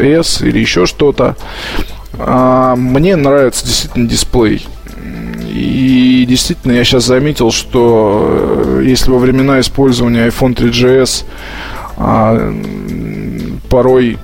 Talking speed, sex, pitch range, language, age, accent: 85 wpm, male, 115-130 Hz, Russian, 20-39, native